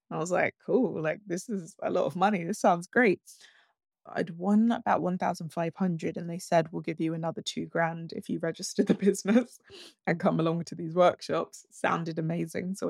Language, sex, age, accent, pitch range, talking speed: English, female, 20-39, British, 170-220 Hz, 190 wpm